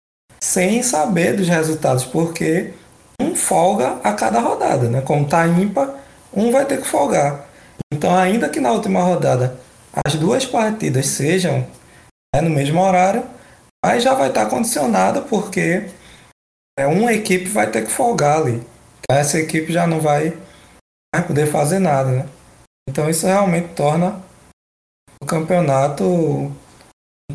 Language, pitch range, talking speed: Portuguese, 130-180 Hz, 145 wpm